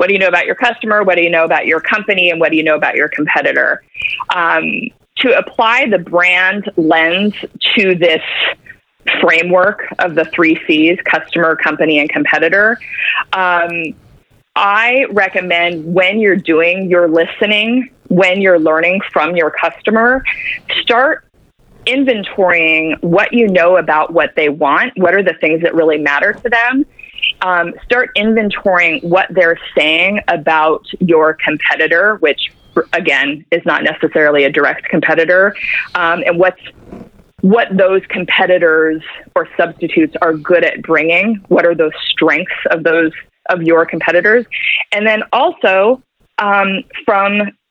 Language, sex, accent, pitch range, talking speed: English, female, American, 165-200 Hz, 145 wpm